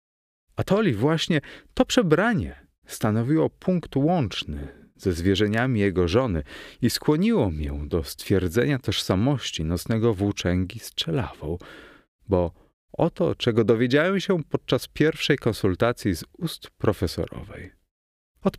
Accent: native